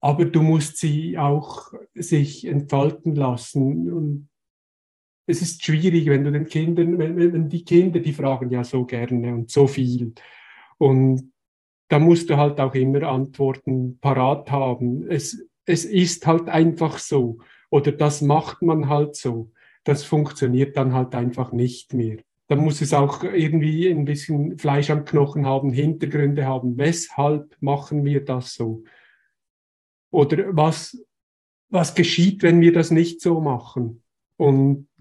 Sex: male